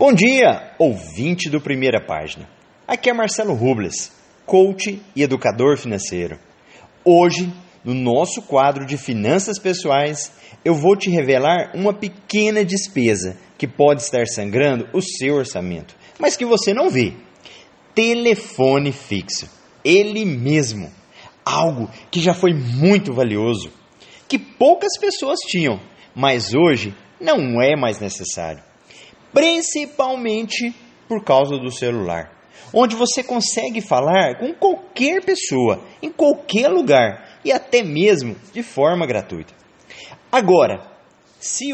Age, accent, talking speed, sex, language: 30-49, Brazilian, 120 wpm, male, English